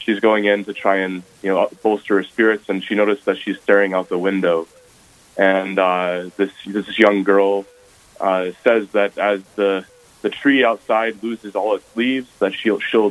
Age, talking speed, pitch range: 20-39, 190 wpm, 95-110 Hz